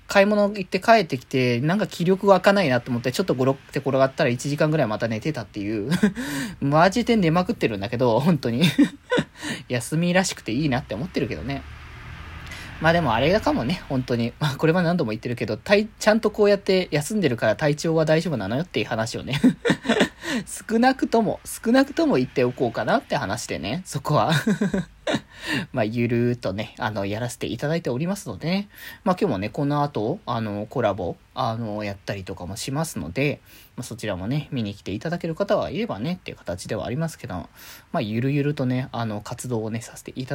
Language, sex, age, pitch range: Japanese, male, 20-39, 120-185 Hz